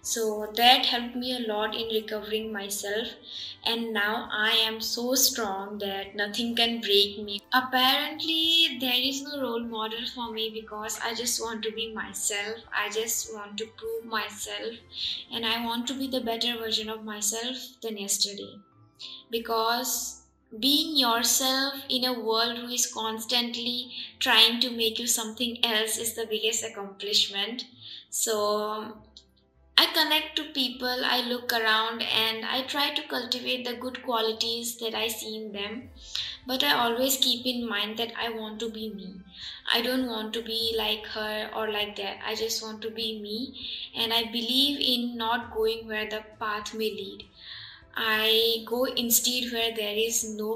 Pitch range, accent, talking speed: 215-240 Hz, native, 165 wpm